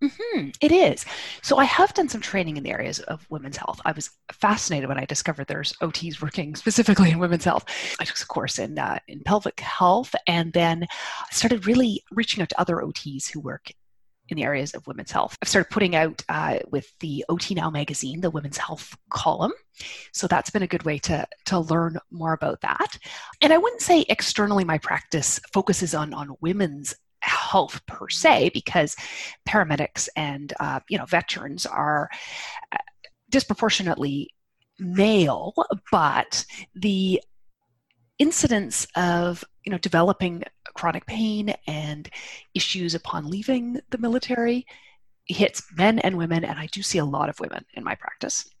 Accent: American